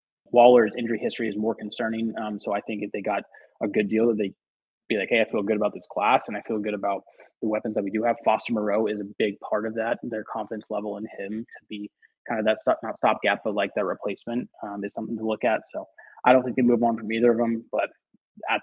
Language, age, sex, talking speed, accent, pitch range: English, 20-39, male, 265 wpm, American, 105-115 Hz